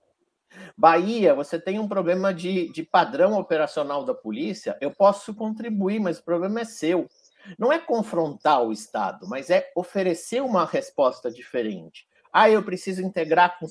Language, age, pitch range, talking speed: Portuguese, 50-69, 155-240 Hz, 160 wpm